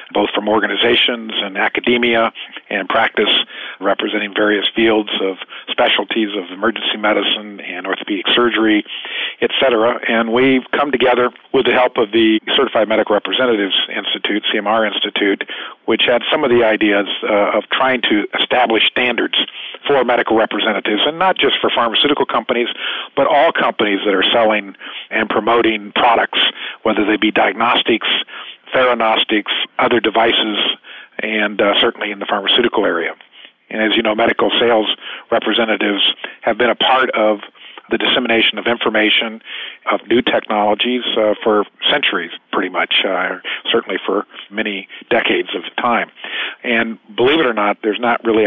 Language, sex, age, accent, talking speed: English, male, 50-69, American, 145 wpm